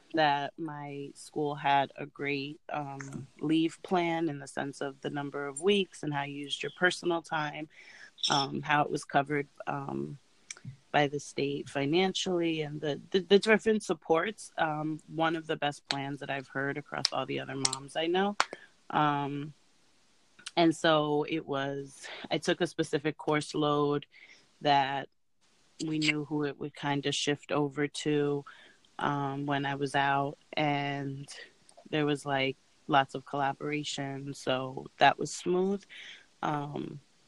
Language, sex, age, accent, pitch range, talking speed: English, female, 30-49, American, 140-160 Hz, 155 wpm